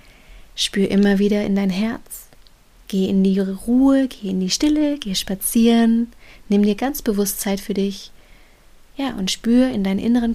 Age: 30-49